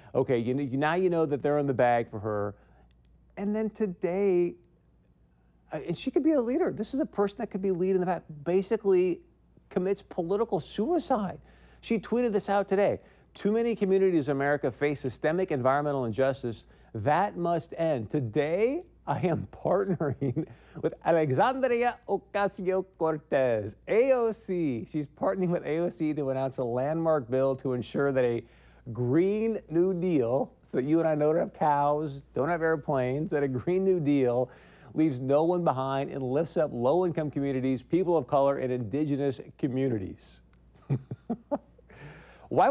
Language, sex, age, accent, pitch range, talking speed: English, male, 40-59, American, 135-190 Hz, 155 wpm